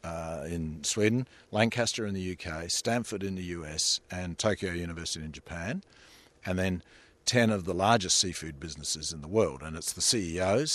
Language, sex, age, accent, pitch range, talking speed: English, male, 50-69, Australian, 85-105 Hz, 175 wpm